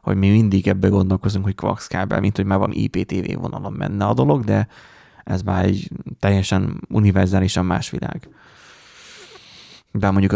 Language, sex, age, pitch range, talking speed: Hungarian, male, 20-39, 95-115 Hz, 145 wpm